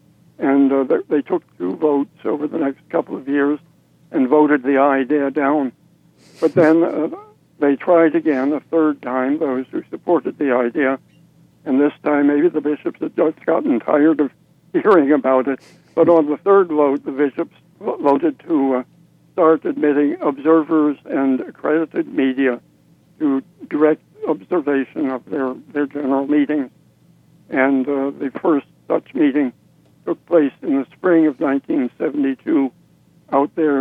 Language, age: English, 60-79